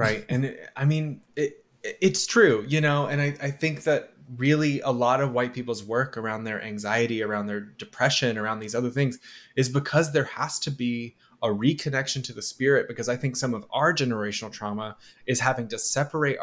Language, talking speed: English, 195 wpm